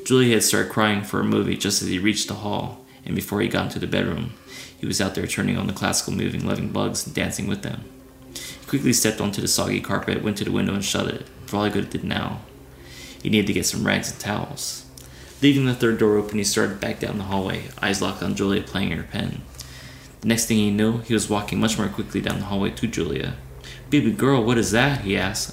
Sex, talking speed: male, 250 wpm